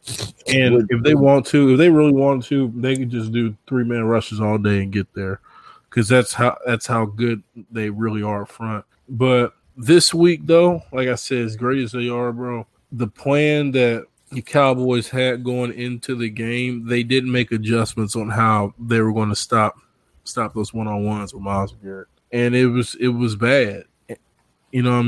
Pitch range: 115-125 Hz